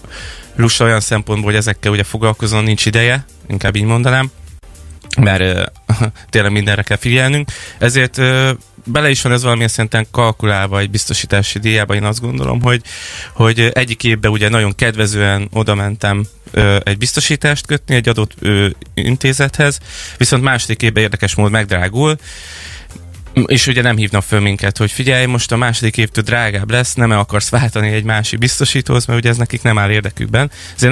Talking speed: 160 wpm